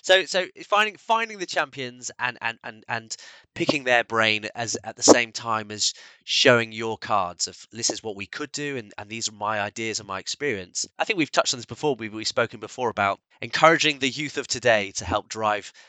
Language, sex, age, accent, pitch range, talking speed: English, male, 20-39, British, 105-135 Hz, 220 wpm